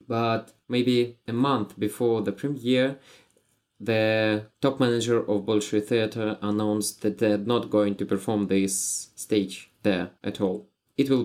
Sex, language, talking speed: male, English, 145 wpm